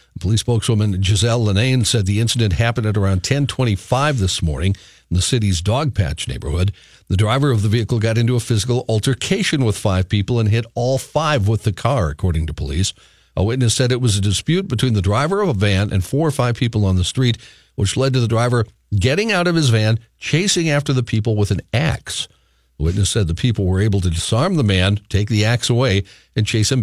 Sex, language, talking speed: male, English, 215 wpm